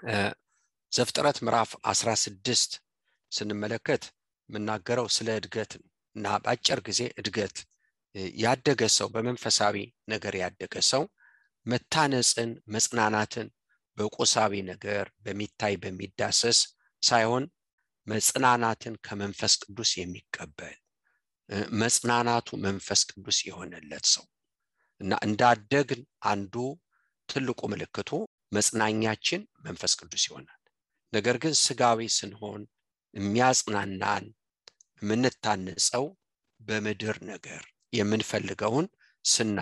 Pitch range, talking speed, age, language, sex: 105-120 Hz, 95 wpm, 50-69, English, male